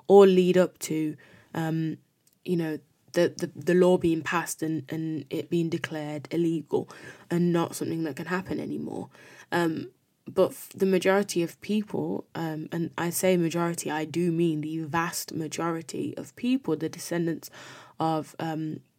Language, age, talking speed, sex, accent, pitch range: English, 20-39, 155 wpm, female, British, 155-185 Hz